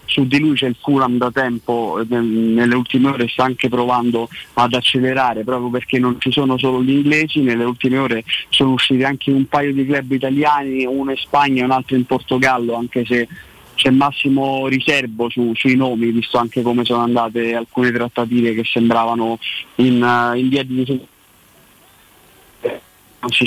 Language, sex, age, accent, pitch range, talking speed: Italian, male, 30-49, native, 120-135 Hz, 165 wpm